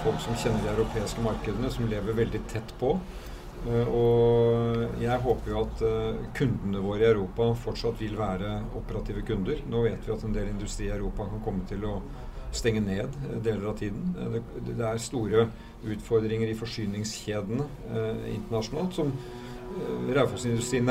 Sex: male